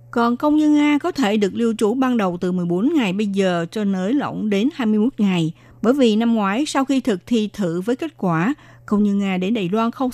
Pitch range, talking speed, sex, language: 180-230 Hz, 245 wpm, female, Vietnamese